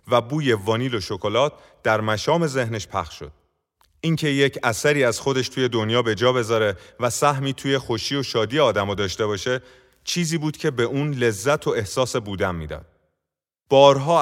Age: 30-49